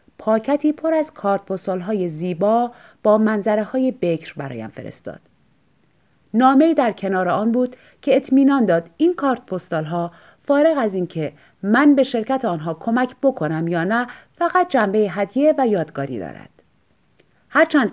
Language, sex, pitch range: Persian, female, 185-260 Hz